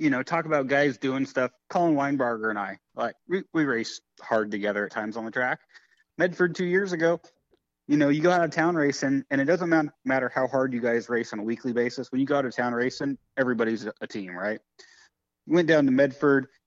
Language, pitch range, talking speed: English, 115-150 Hz, 225 wpm